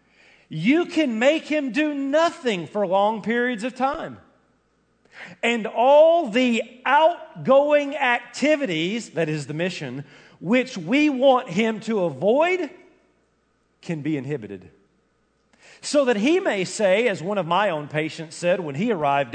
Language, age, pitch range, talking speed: English, 40-59, 170-270 Hz, 135 wpm